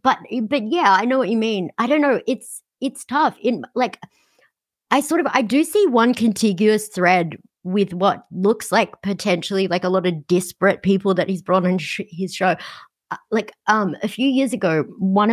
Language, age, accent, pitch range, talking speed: English, 30-49, Australian, 180-225 Hz, 190 wpm